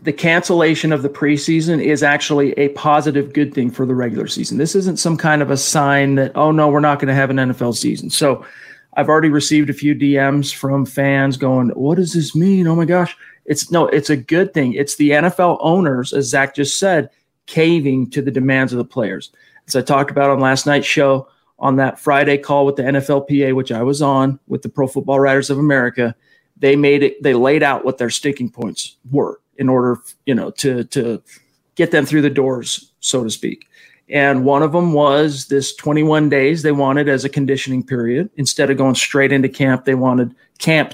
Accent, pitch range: American, 130-150 Hz